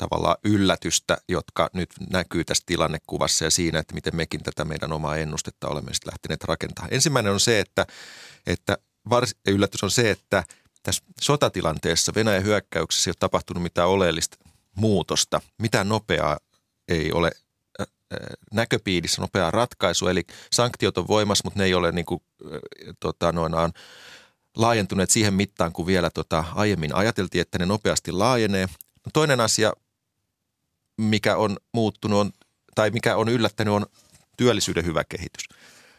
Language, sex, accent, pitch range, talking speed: Finnish, male, native, 85-110 Hz, 145 wpm